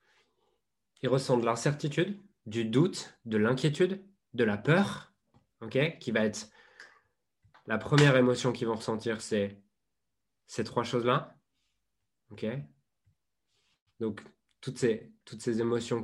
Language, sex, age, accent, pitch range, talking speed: French, male, 20-39, French, 110-140 Hz, 115 wpm